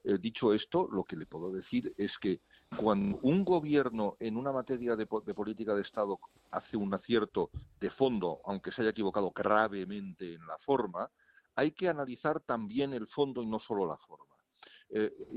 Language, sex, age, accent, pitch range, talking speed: Spanish, male, 50-69, Spanish, 110-155 Hz, 180 wpm